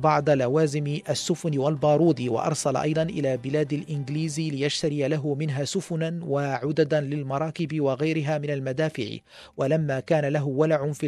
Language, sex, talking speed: Arabic, male, 125 wpm